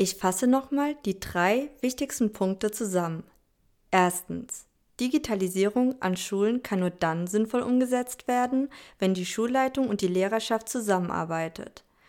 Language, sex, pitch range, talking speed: German, female, 180-245 Hz, 125 wpm